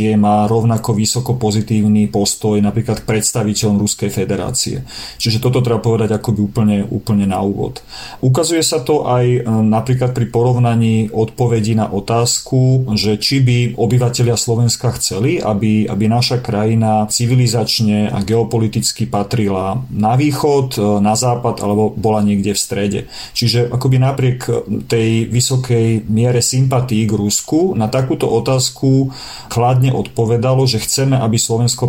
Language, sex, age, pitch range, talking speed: Slovak, male, 40-59, 105-125 Hz, 135 wpm